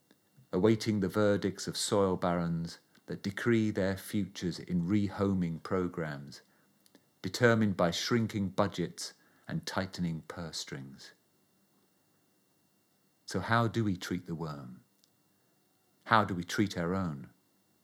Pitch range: 85-110 Hz